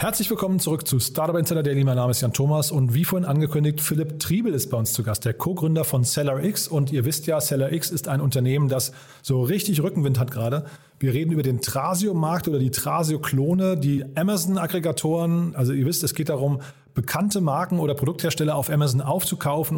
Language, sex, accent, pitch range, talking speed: German, male, German, 135-170 Hz, 195 wpm